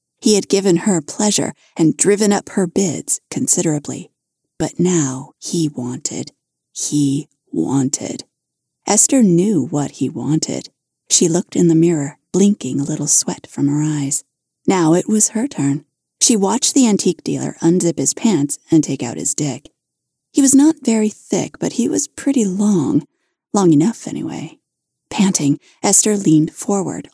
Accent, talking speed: American, 155 wpm